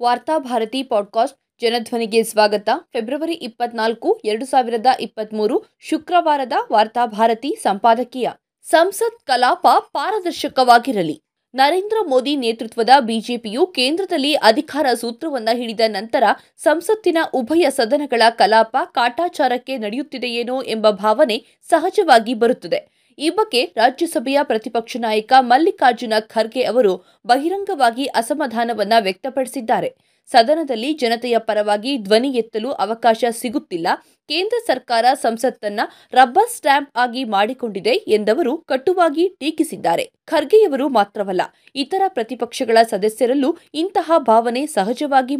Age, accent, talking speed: 20-39, native, 95 wpm